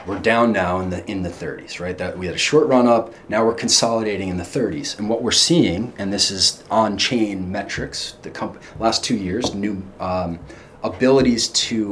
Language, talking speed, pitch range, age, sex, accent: English, 205 wpm, 90-115 Hz, 30-49, male, American